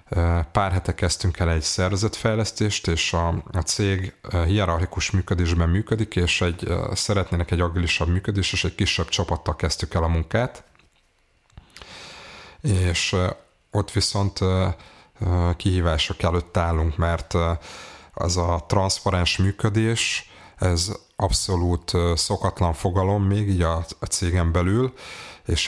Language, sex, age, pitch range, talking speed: Hungarian, male, 30-49, 85-95 Hz, 110 wpm